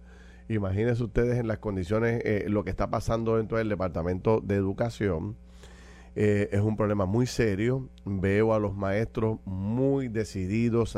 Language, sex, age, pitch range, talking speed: Spanish, male, 40-59, 90-110 Hz, 150 wpm